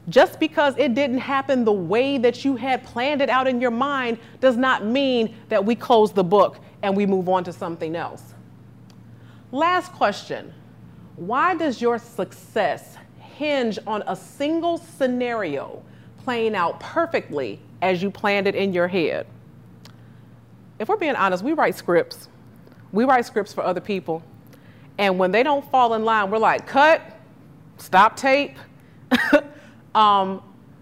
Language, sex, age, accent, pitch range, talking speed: English, female, 30-49, American, 175-250 Hz, 150 wpm